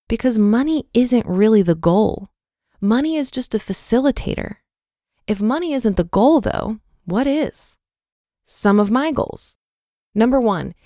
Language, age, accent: English, 20-39, American